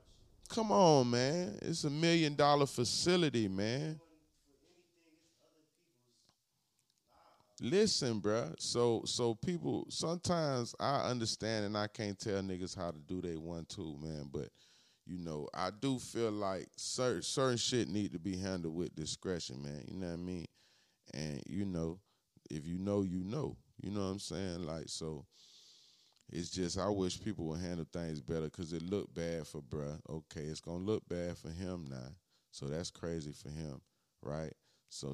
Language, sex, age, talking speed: English, male, 30-49, 165 wpm